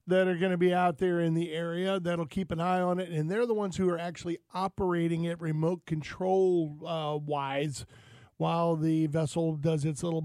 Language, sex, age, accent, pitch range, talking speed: English, male, 40-59, American, 155-185 Hz, 200 wpm